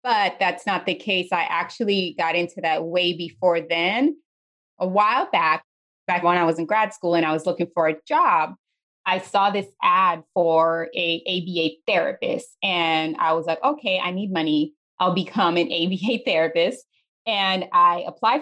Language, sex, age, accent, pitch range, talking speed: English, female, 20-39, American, 165-215 Hz, 175 wpm